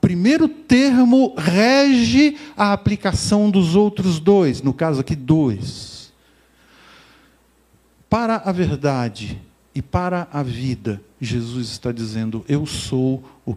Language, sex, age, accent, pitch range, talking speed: Portuguese, male, 50-69, Brazilian, 115-190 Hz, 115 wpm